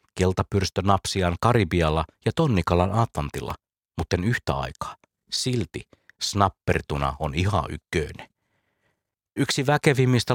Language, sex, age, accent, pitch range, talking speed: Finnish, male, 50-69, native, 85-110 Hz, 85 wpm